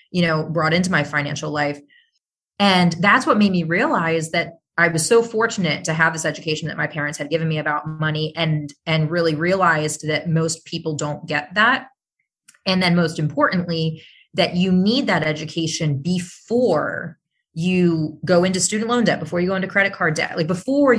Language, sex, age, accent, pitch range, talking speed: English, female, 30-49, American, 155-180 Hz, 185 wpm